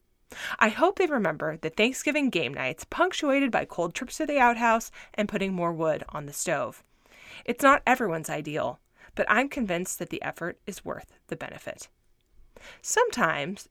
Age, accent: 30-49, American